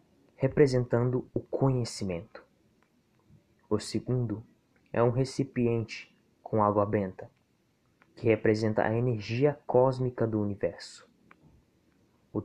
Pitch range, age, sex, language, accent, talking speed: 110-130 Hz, 20-39, male, Portuguese, Brazilian, 90 wpm